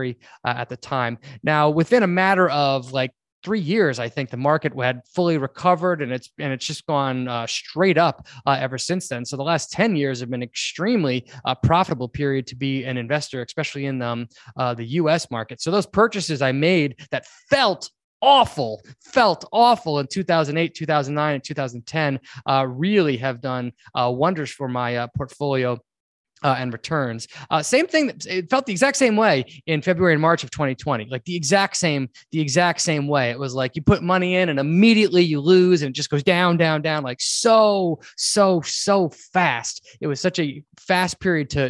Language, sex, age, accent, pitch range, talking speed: English, male, 20-39, American, 135-185 Hz, 195 wpm